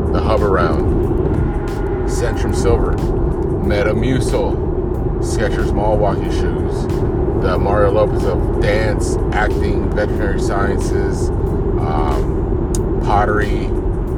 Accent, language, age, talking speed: American, English, 30-49, 85 wpm